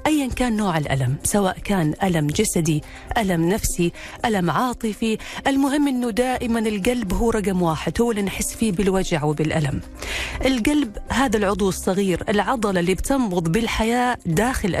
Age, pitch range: 40-59, 170-235 Hz